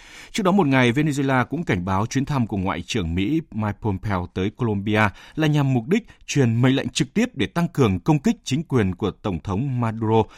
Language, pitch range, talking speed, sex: Vietnamese, 95-140 Hz, 220 wpm, male